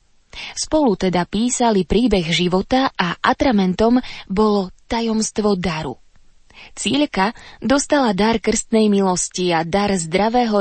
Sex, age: female, 20-39